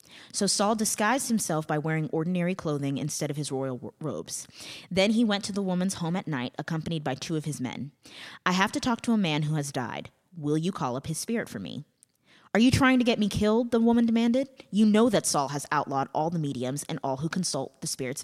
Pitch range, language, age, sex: 145-195 Hz, English, 20-39, female